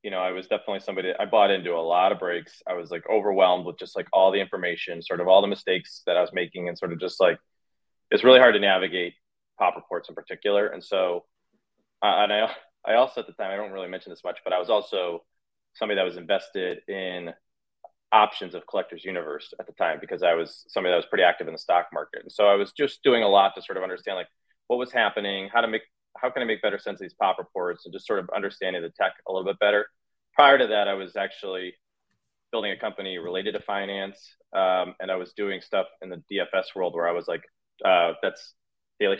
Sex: male